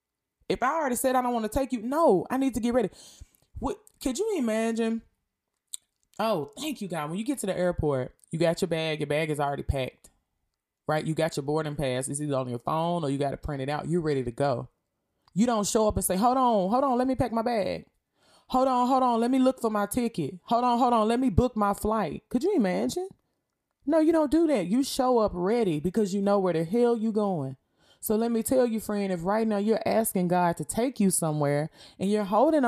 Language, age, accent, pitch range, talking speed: English, 20-39, American, 160-235 Hz, 245 wpm